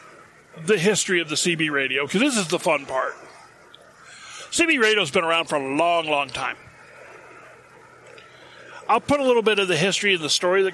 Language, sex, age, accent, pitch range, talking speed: English, male, 40-59, American, 170-235 Hz, 190 wpm